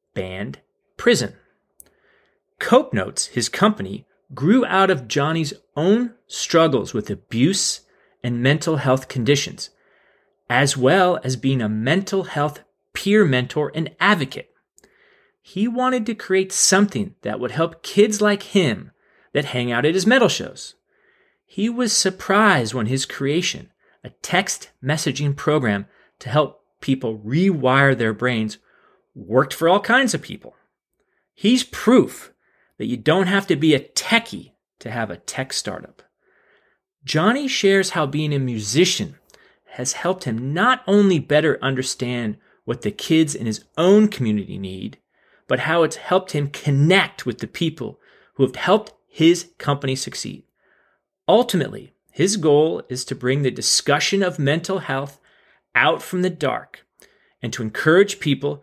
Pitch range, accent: 130-195 Hz, American